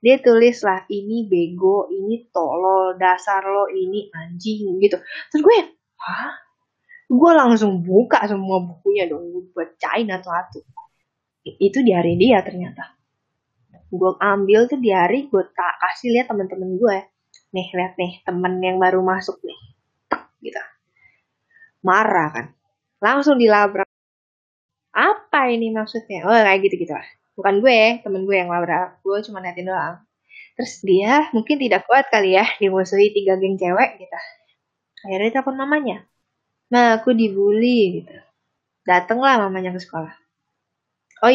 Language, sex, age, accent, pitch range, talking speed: Indonesian, female, 20-39, native, 185-235 Hz, 135 wpm